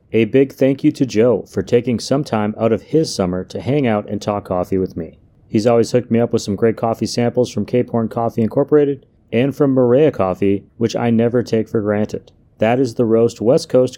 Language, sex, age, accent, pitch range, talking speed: English, male, 30-49, American, 100-130 Hz, 230 wpm